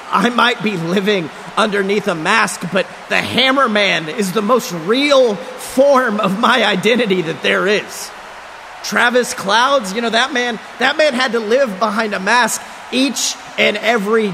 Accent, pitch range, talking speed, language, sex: American, 205-255 Hz, 165 wpm, English, male